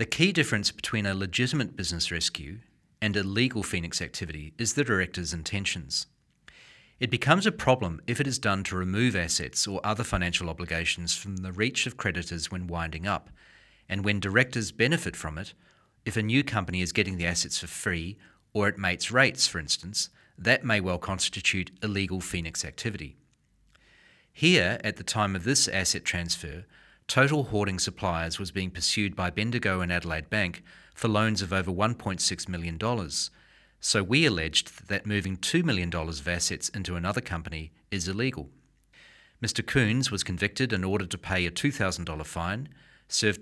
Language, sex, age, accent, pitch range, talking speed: English, male, 40-59, Australian, 90-115 Hz, 165 wpm